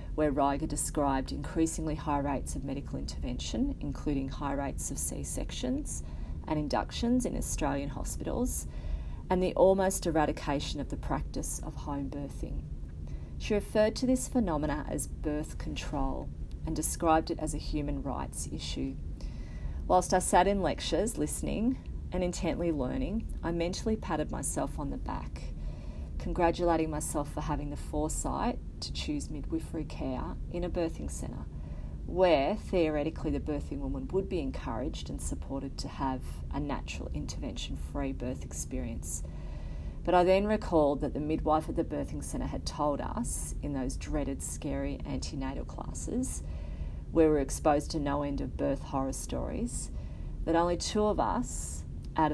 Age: 40-59